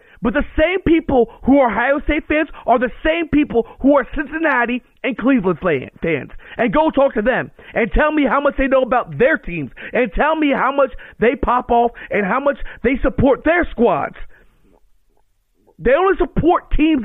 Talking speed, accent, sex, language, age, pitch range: 185 wpm, American, male, English, 40-59, 195-275 Hz